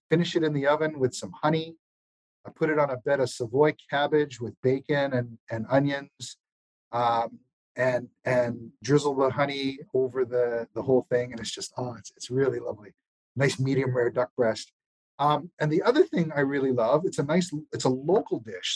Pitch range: 125-155 Hz